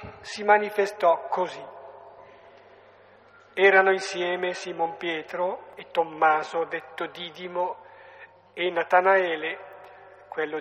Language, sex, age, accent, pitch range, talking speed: Italian, male, 50-69, native, 160-205 Hz, 80 wpm